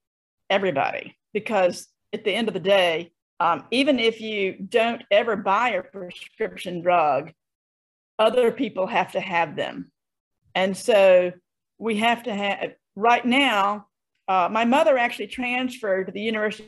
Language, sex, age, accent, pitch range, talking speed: English, female, 50-69, American, 200-260 Hz, 145 wpm